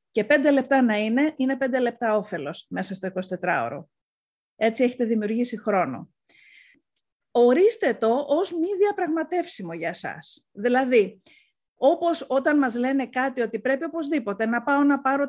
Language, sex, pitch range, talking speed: Greek, female, 220-275 Hz, 140 wpm